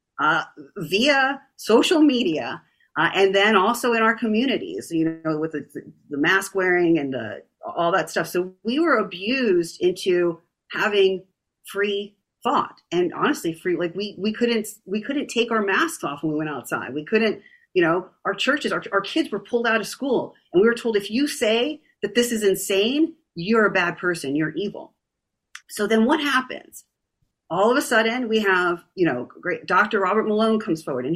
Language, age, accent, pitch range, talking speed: English, 40-59, American, 180-240 Hz, 185 wpm